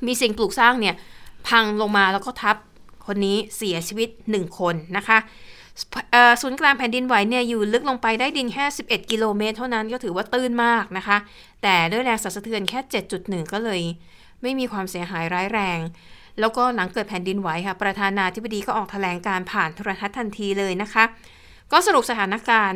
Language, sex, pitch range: Thai, female, 195-235 Hz